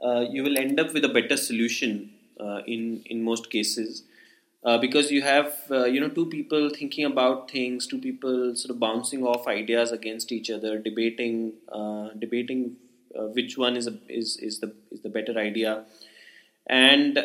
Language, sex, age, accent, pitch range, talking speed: English, male, 20-39, Indian, 120-145 Hz, 180 wpm